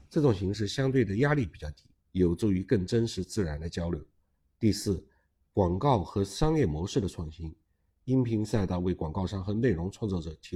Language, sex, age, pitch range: Chinese, male, 50-69, 85-115 Hz